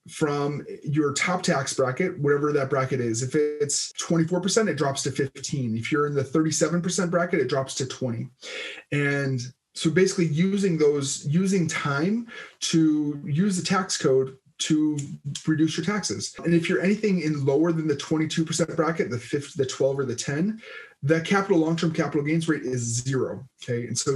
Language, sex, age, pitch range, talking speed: English, male, 20-39, 140-170 Hz, 175 wpm